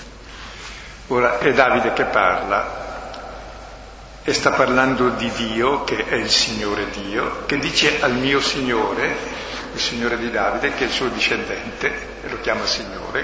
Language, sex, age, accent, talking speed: Italian, male, 60-79, native, 150 wpm